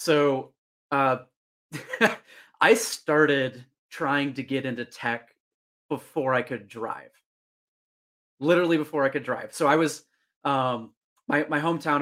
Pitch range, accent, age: 125-145 Hz, American, 30-49